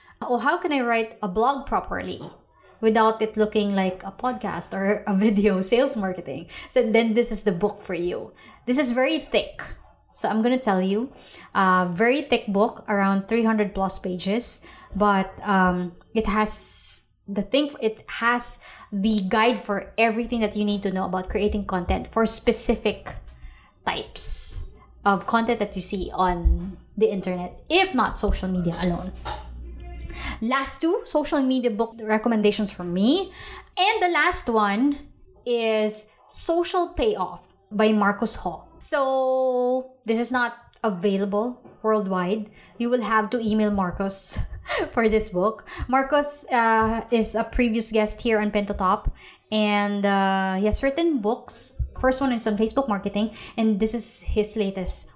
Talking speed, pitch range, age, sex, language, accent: 150 wpm, 200-245 Hz, 20-39, female, English, Filipino